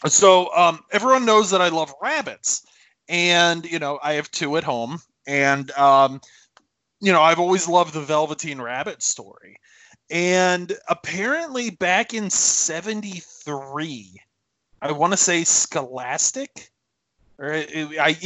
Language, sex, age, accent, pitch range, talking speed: English, male, 30-49, American, 135-180 Hz, 130 wpm